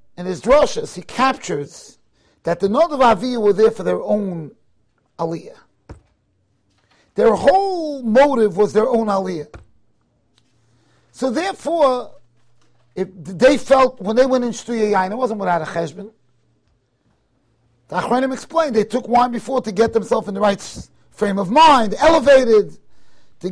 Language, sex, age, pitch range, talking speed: English, male, 40-59, 175-260 Hz, 140 wpm